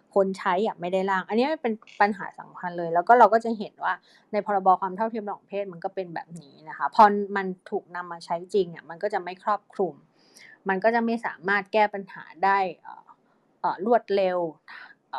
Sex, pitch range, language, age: female, 185-230 Hz, Thai, 20-39